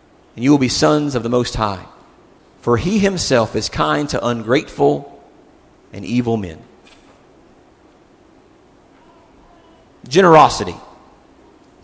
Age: 40-59